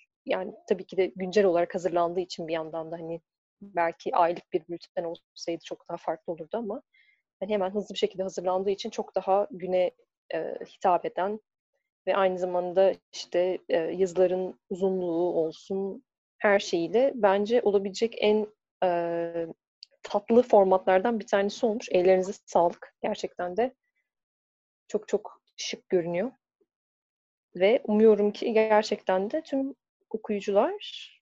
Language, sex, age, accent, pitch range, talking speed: Turkish, female, 30-49, native, 180-220 Hz, 125 wpm